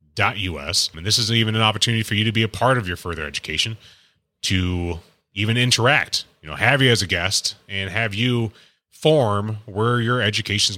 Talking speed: 200 wpm